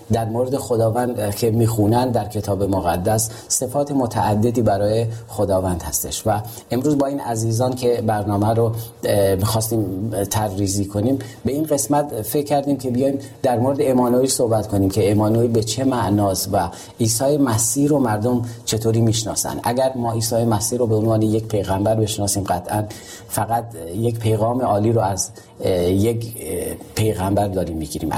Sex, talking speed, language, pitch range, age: male, 145 wpm, Persian, 105-120 Hz, 40-59